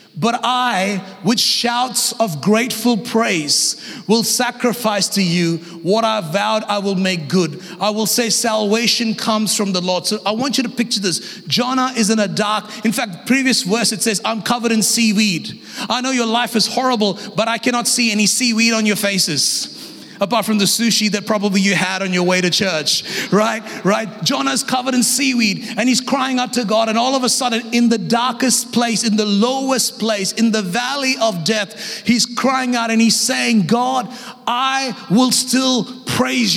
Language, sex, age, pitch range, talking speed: English, male, 30-49, 210-250 Hz, 190 wpm